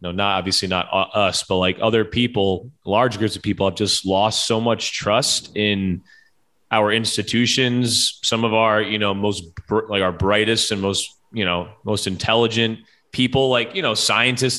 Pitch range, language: 100-120 Hz, English